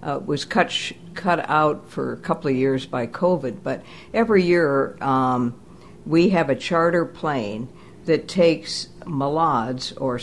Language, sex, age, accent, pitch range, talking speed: English, female, 60-79, American, 130-165 Hz, 155 wpm